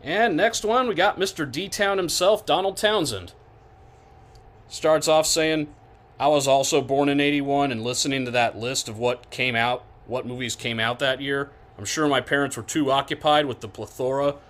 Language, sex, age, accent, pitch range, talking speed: English, male, 30-49, American, 115-140 Hz, 180 wpm